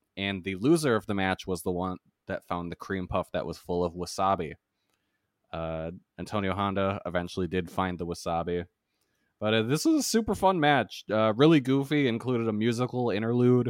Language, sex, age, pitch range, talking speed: English, male, 20-39, 95-120 Hz, 185 wpm